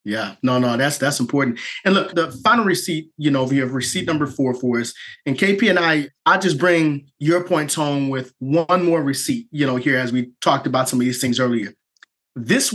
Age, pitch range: 30-49, 135-175 Hz